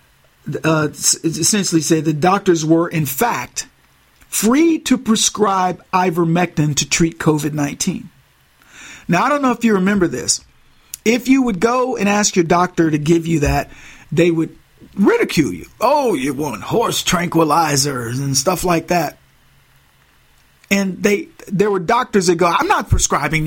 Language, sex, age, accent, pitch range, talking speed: English, male, 50-69, American, 165-220 Hz, 150 wpm